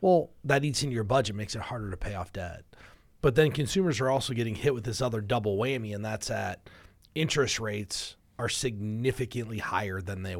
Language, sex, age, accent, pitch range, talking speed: English, male, 30-49, American, 105-140 Hz, 200 wpm